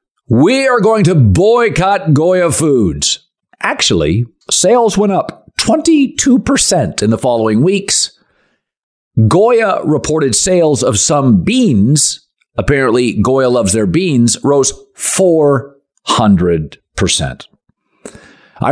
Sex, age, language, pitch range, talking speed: male, 50-69, English, 115-190 Hz, 95 wpm